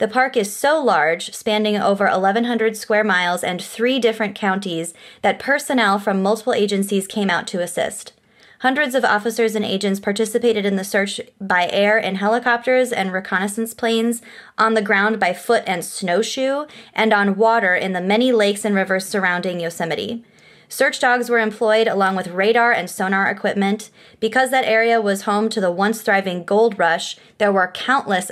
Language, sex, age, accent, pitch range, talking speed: English, female, 20-39, American, 190-230 Hz, 170 wpm